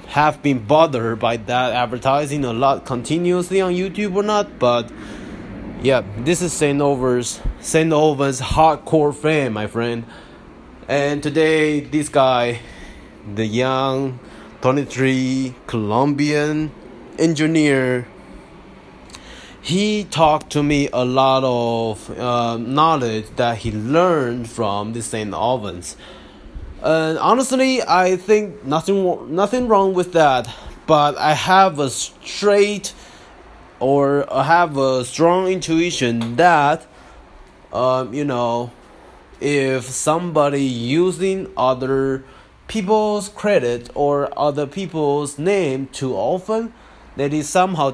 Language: English